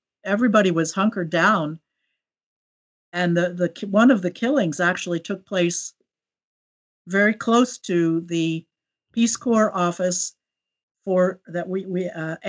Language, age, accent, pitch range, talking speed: English, 60-79, American, 165-195 Hz, 125 wpm